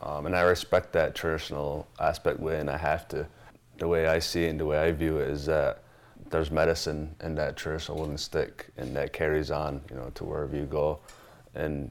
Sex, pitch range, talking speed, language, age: male, 75-80 Hz, 210 wpm, English, 20-39